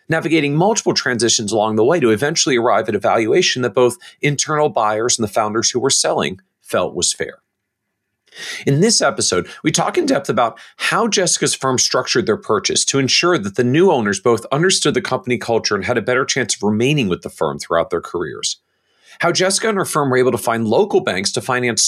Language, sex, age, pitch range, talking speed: English, male, 40-59, 115-170 Hz, 210 wpm